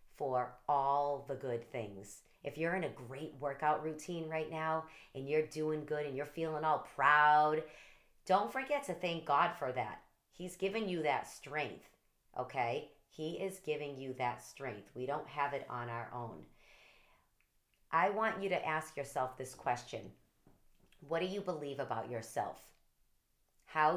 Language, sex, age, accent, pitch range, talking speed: English, female, 40-59, American, 130-175 Hz, 160 wpm